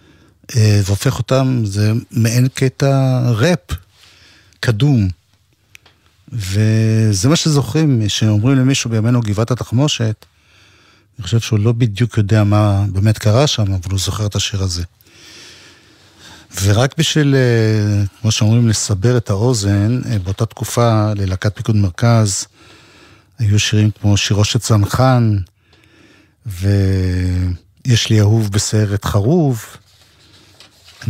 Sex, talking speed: male, 105 wpm